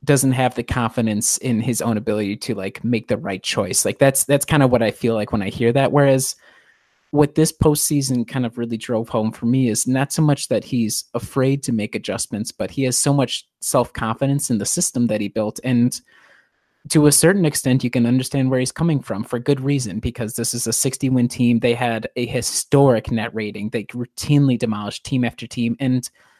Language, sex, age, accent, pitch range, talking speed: English, male, 30-49, American, 115-140 Hz, 215 wpm